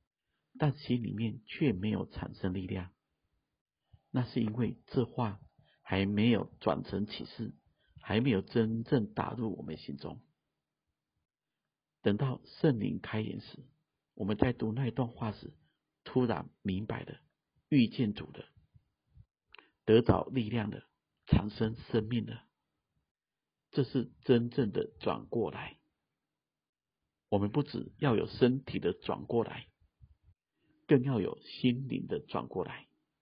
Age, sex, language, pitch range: 50-69, male, Chinese, 105-125 Hz